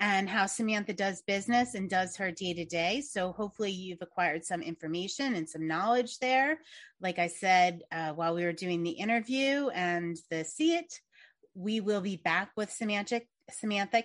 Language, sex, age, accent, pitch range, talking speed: English, female, 30-49, American, 175-220 Hz, 180 wpm